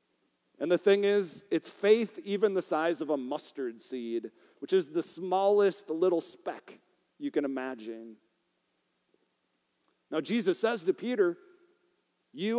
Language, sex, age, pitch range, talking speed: English, male, 40-59, 155-230 Hz, 135 wpm